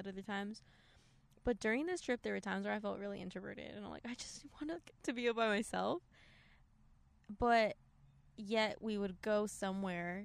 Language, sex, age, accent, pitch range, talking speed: English, female, 10-29, American, 175-210 Hz, 175 wpm